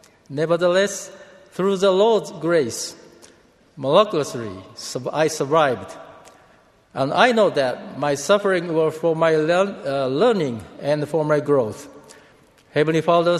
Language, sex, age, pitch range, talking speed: English, male, 50-69, 145-180 Hz, 110 wpm